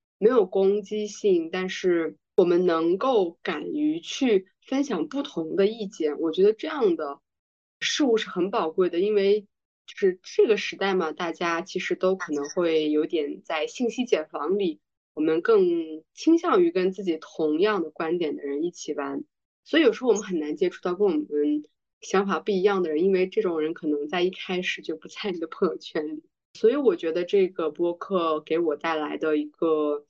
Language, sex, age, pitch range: Chinese, female, 20-39, 160-240 Hz